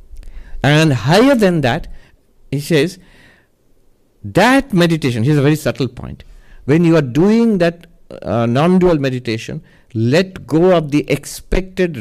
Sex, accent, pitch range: male, Indian, 110-165 Hz